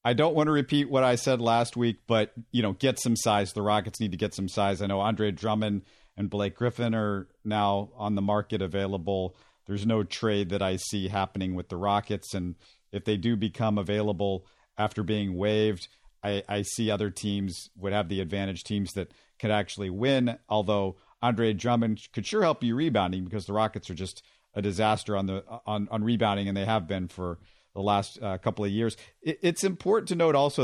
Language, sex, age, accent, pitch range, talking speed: English, male, 50-69, American, 100-125 Hz, 205 wpm